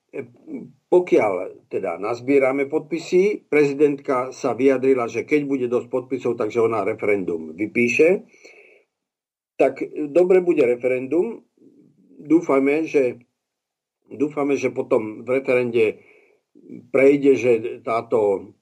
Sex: male